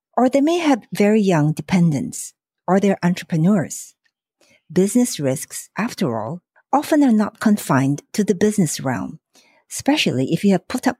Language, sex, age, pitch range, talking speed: English, female, 60-79, 165-240 Hz, 155 wpm